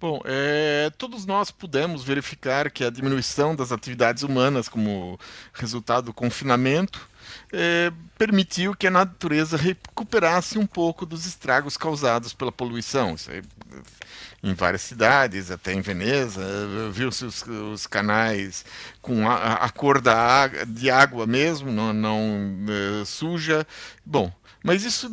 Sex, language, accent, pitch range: male, Portuguese, Brazilian, 120-180 Hz